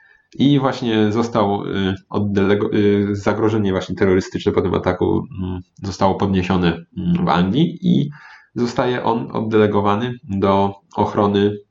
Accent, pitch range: native, 90-110 Hz